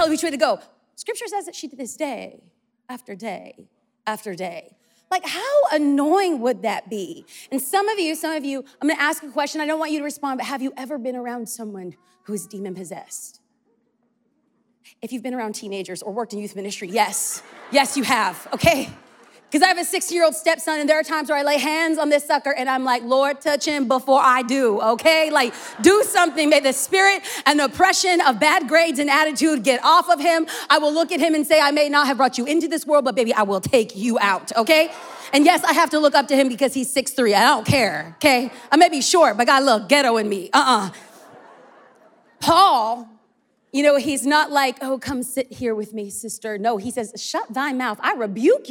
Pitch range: 245-325 Hz